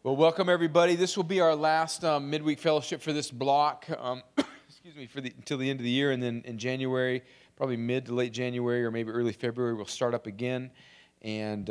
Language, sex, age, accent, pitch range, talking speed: English, male, 40-59, American, 105-125 Hz, 220 wpm